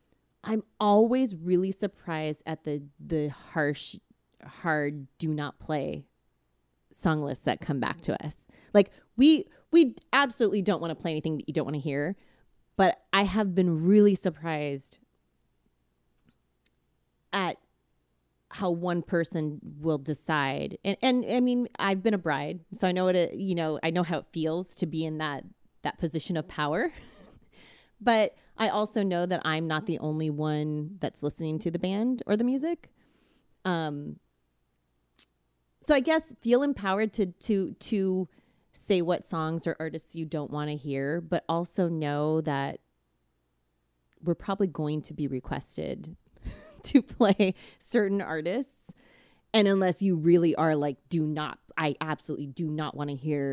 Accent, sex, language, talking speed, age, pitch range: American, female, English, 155 wpm, 30-49, 145-195 Hz